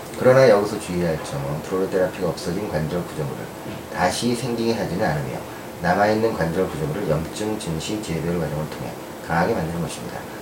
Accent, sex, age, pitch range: native, male, 30-49, 85-110 Hz